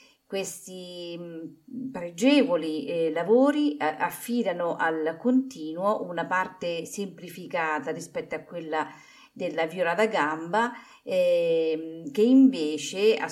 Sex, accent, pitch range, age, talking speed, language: female, native, 165-245 Hz, 40-59, 90 wpm, Italian